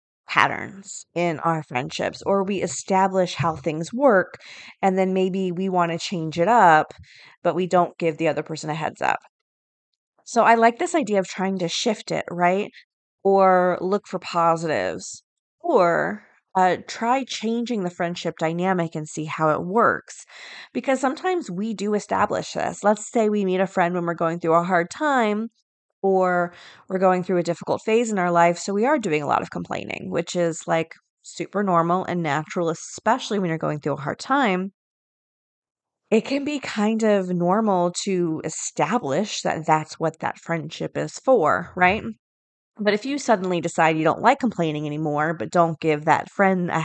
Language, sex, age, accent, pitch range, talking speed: English, female, 20-39, American, 165-205 Hz, 180 wpm